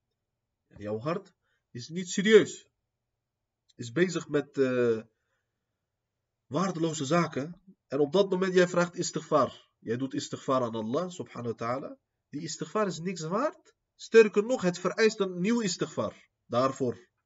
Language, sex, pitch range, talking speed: Dutch, male, 115-165 Hz, 135 wpm